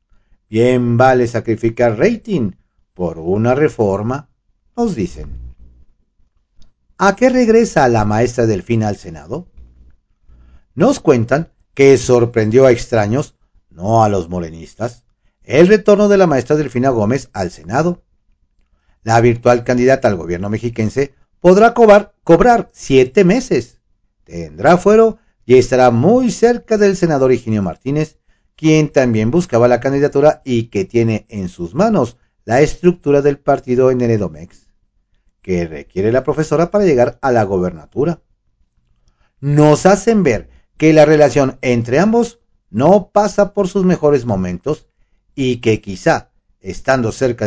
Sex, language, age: male, Spanish, 50-69